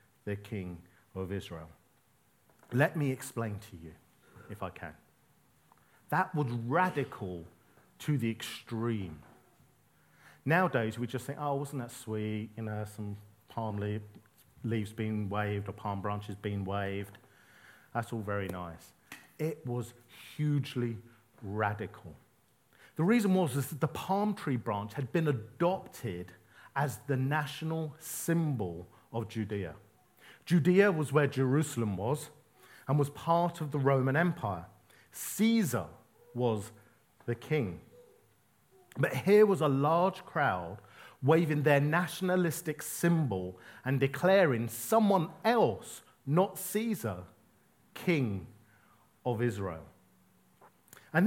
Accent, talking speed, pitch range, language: British, 115 wpm, 105-155 Hz, English